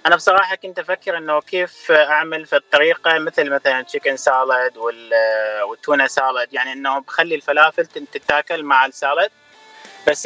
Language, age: Arabic, 20-39